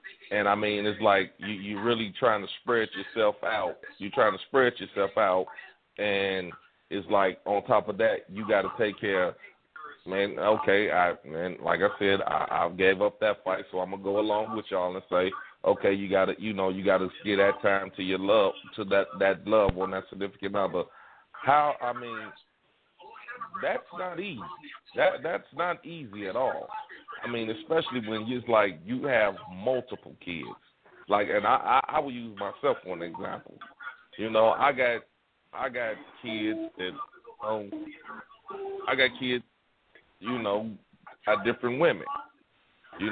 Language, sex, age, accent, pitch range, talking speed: English, male, 30-49, American, 100-125 Hz, 180 wpm